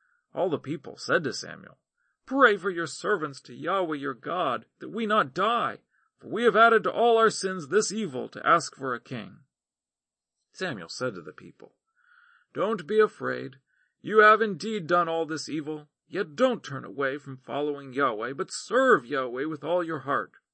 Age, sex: 40-59, male